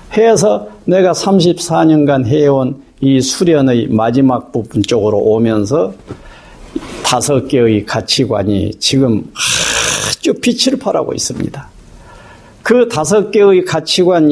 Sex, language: male, Korean